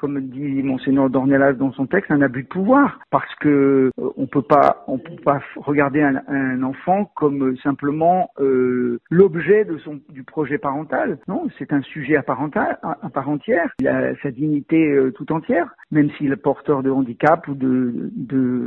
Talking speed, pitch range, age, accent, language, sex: 190 wpm, 135-165 Hz, 50-69, French, French, male